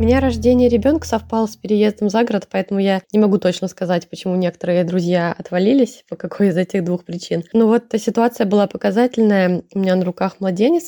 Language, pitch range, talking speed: Russian, 180-220 Hz, 195 wpm